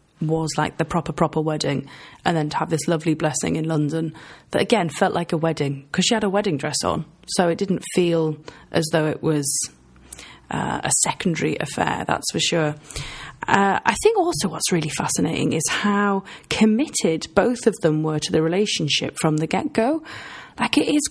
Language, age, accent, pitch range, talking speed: English, 30-49, British, 155-195 Hz, 190 wpm